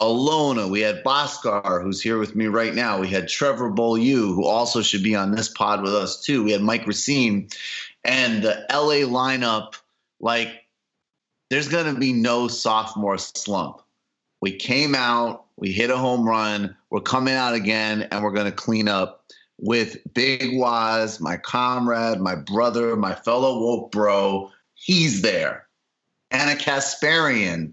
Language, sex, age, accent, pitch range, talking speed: English, male, 30-49, American, 105-130 Hz, 160 wpm